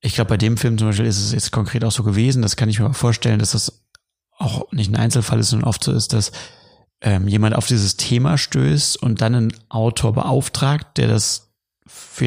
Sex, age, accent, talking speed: male, 30-49, German, 220 wpm